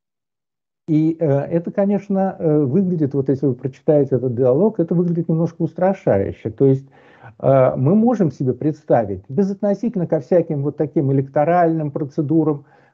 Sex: male